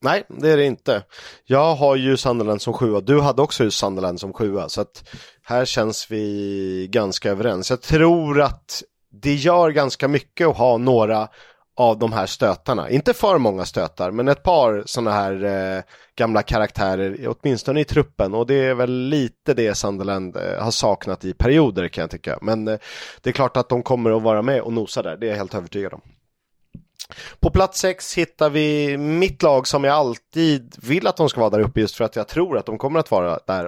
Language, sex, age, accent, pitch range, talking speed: Swedish, male, 30-49, native, 105-135 Hz, 210 wpm